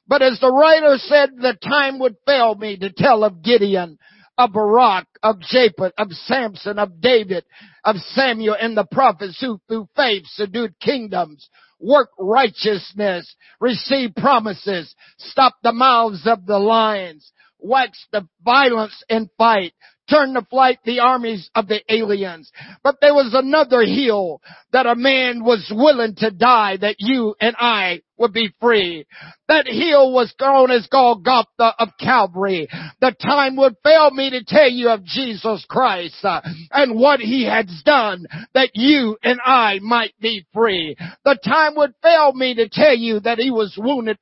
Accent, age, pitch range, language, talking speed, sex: American, 60-79, 205-260 Hz, English, 160 wpm, male